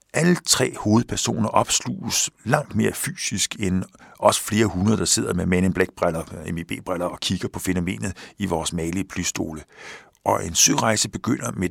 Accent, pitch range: native, 95-125 Hz